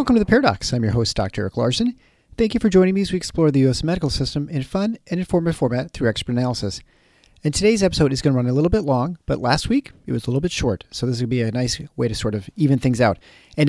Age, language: 40-59, English